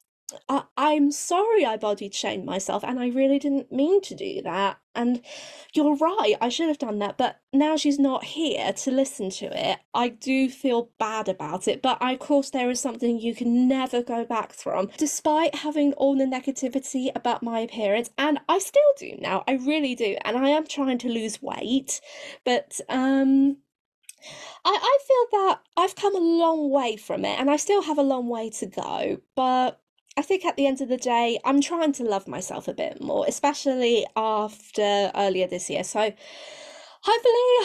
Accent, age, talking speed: British, 20-39, 190 wpm